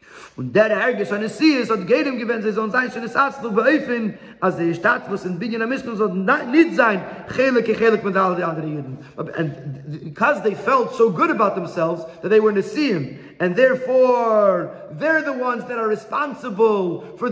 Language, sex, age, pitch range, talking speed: English, male, 40-59, 165-230 Hz, 75 wpm